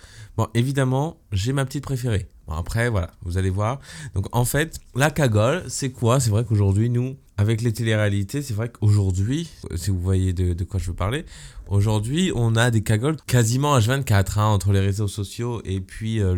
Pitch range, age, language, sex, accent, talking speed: 95-120 Hz, 20-39, French, male, French, 200 wpm